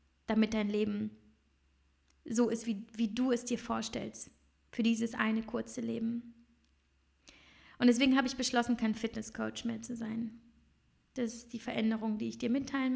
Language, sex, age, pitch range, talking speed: German, female, 20-39, 220-255 Hz, 160 wpm